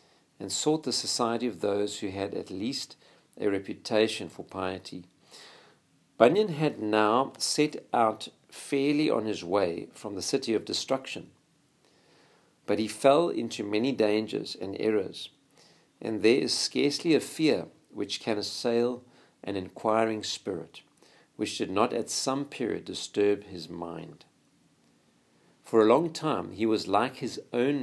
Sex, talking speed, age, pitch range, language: male, 140 wpm, 50-69, 105-140 Hz, English